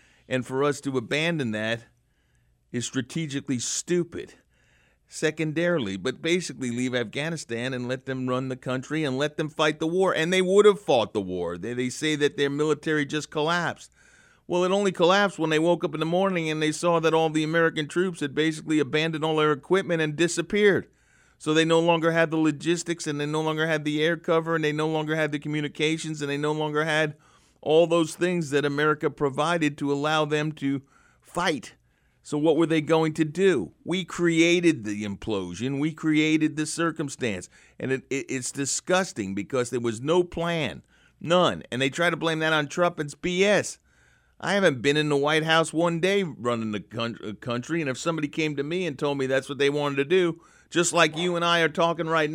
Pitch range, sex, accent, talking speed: 140-170 Hz, male, American, 200 wpm